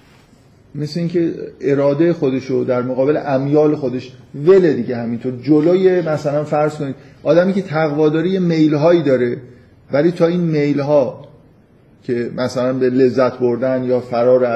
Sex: male